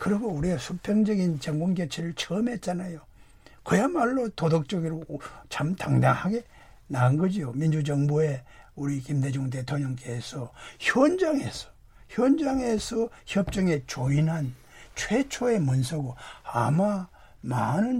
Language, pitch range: Korean, 150-210 Hz